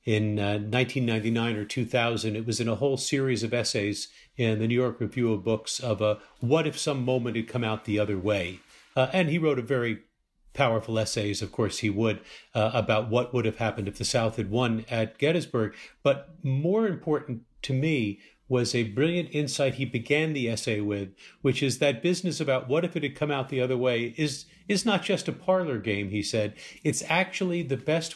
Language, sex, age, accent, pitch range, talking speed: English, male, 50-69, American, 110-145 Hz, 210 wpm